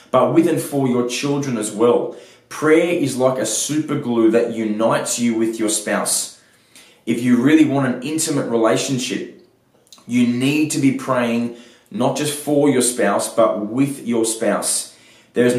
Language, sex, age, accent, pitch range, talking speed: English, male, 20-39, Australian, 110-130 Hz, 160 wpm